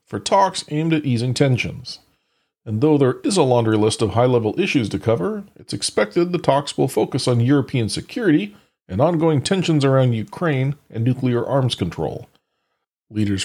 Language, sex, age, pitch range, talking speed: English, male, 40-59, 115-150 Hz, 165 wpm